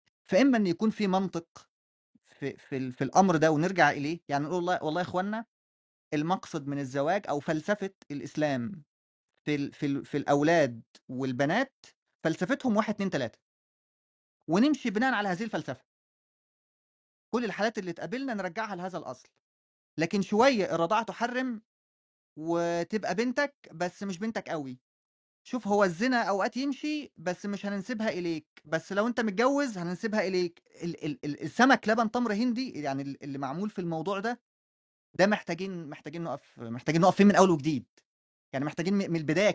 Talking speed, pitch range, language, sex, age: 145 wpm, 145-205 Hz, Arabic, male, 20-39